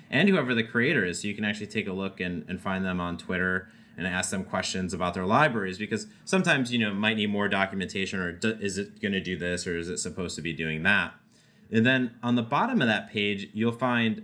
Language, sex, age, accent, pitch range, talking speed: English, male, 30-49, American, 100-130 Hz, 250 wpm